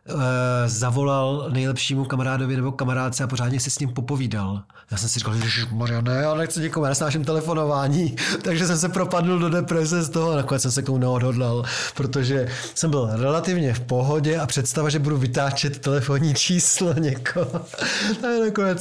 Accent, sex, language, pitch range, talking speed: native, male, Czech, 120-150 Hz, 170 wpm